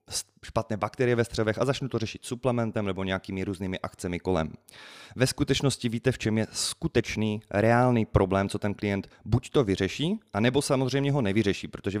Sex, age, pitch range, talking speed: male, 30-49, 95-120 Hz, 170 wpm